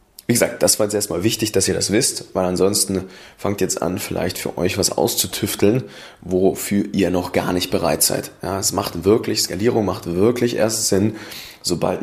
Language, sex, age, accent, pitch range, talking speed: German, male, 20-39, German, 90-110 Hz, 190 wpm